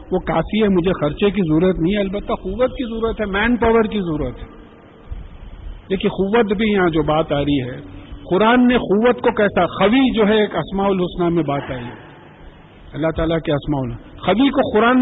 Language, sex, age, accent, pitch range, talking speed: English, male, 50-69, Indian, 175-240 Hz, 200 wpm